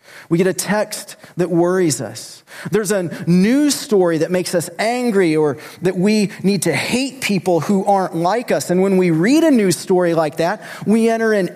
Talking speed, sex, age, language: 195 wpm, male, 30-49, English